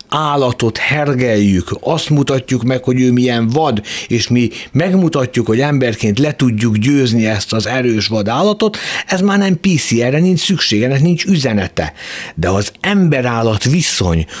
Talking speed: 140 wpm